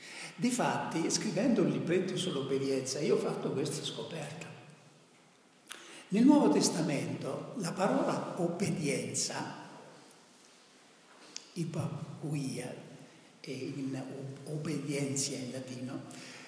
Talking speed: 80 wpm